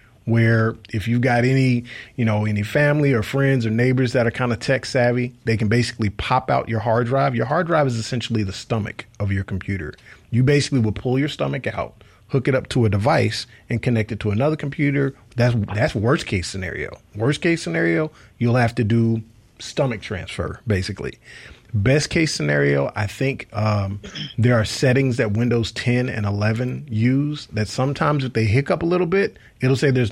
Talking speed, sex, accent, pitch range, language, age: 195 wpm, male, American, 110-130 Hz, English, 30-49